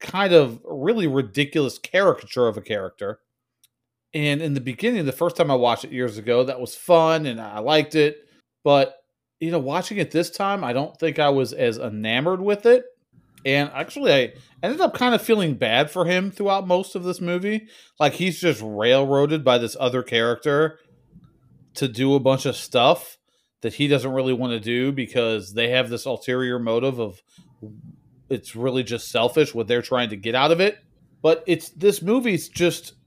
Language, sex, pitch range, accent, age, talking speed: English, male, 125-170 Hz, American, 30-49, 190 wpm